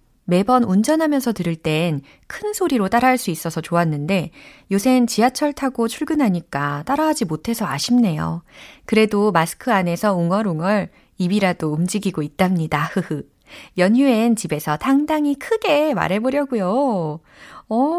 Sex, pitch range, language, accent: female, 160-240 Hz, Korean, native